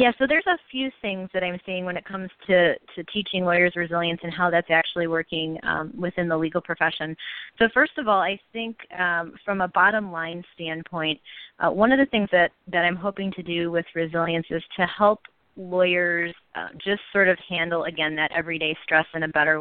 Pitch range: 160-185 Hz